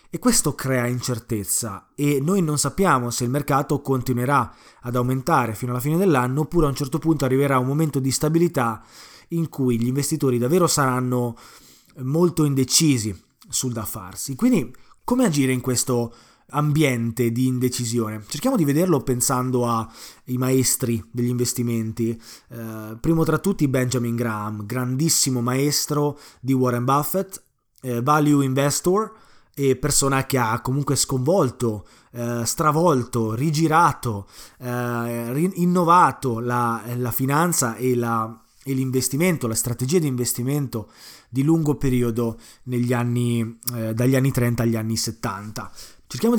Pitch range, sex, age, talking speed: 120-150 Hz, male, 20-39, 125 wpm